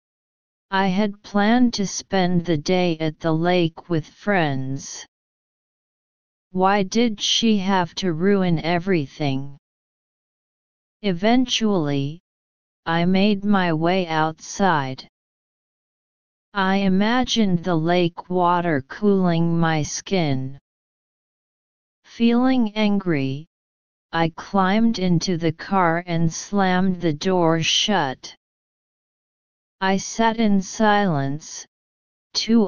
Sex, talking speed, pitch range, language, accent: female, 90 wpm, 160-195 Hz, English, American